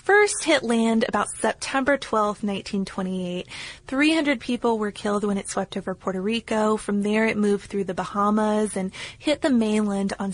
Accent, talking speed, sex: American, 170 wpm, female